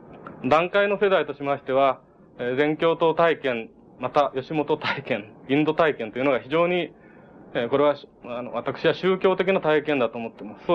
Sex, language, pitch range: male, Japanese, 130-170 Hz